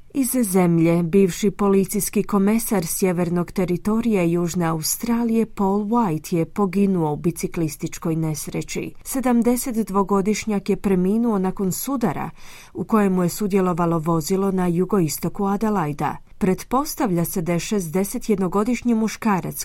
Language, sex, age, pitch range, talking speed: Croatian, female, 30-49, 175-215 Hz, 105 wpm